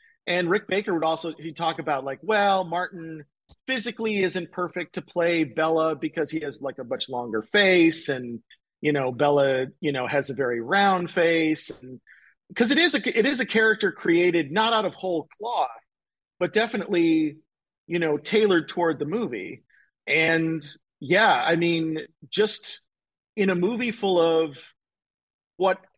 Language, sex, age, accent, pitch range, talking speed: English, male, 40-59, American, 155-195 Hz, 160 wpm